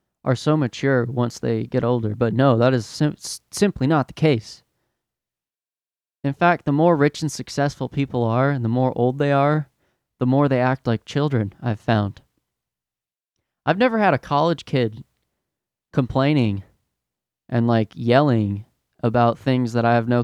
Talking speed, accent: 160 wpm, American